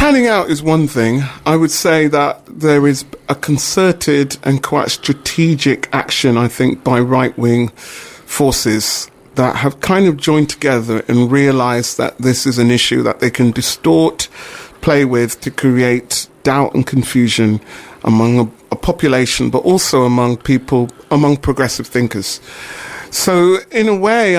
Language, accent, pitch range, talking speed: English, British, 125-150 Hz, 150 wpm